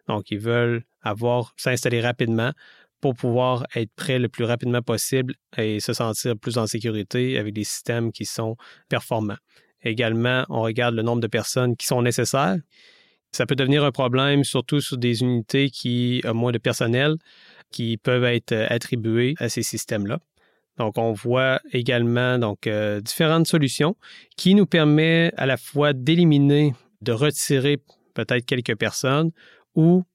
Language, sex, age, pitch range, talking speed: French, male, 30-49, 115-135 Hz, 155 wpm